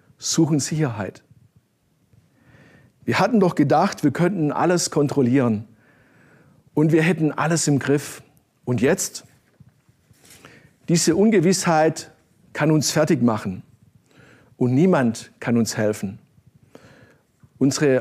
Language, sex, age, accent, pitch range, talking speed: German, male, 50-69, German, 130-170 Hz, 100 wpm